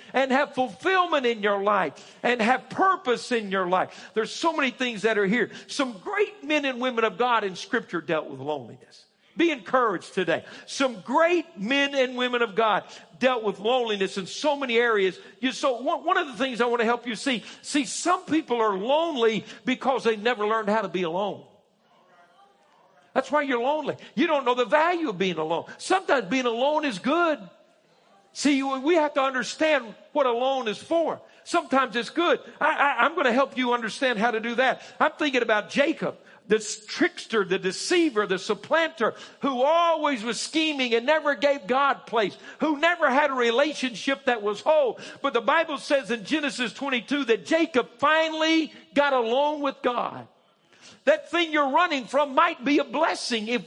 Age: 50-69